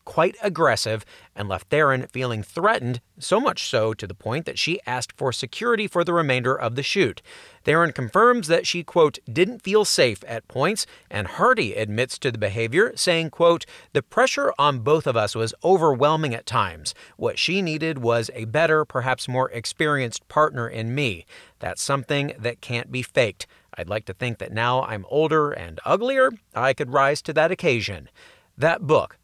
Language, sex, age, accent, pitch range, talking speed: English, male, 40-59, American, 120-185 Hz, 180 wpm